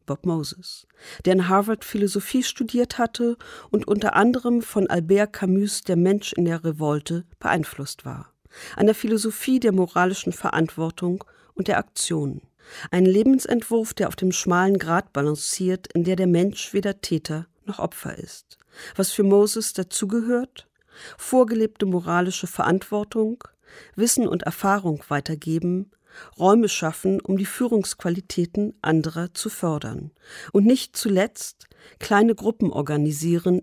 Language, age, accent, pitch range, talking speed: German, 40-59, German, 165-210 Hz, 125 wpm